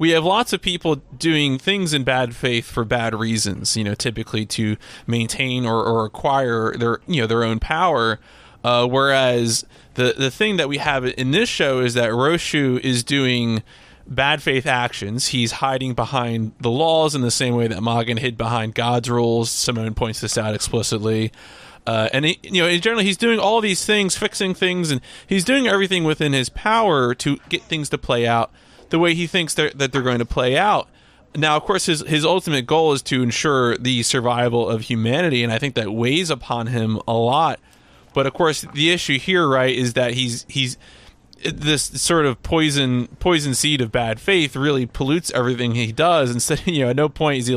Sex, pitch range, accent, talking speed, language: male, 115-155 Hz, American, 205 wpm, English